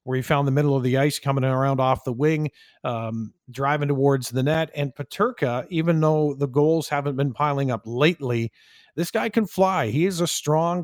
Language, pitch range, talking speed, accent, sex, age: English, 130-160 Hz, 205 wpm, American, male, 50-69